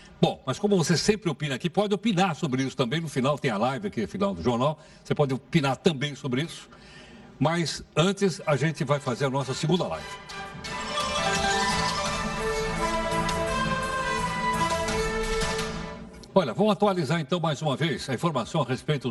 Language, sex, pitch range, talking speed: Portuguese, male, 150-200 Hz, 155 wpm